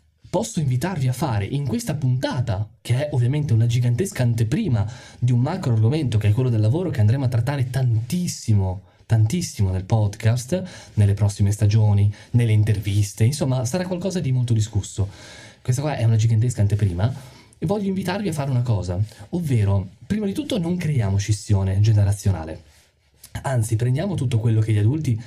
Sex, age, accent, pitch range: male, 20-39, native, 105-150 Hz